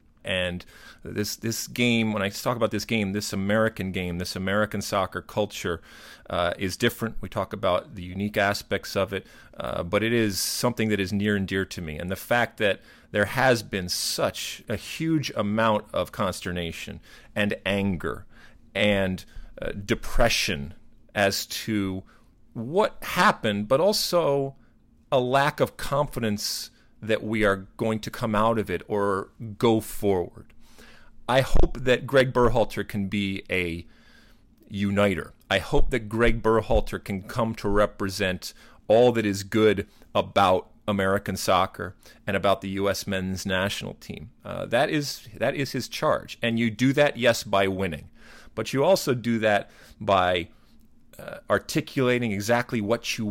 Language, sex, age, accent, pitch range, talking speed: English, male, 40-59, American, 95-115 Hz, 155 wpm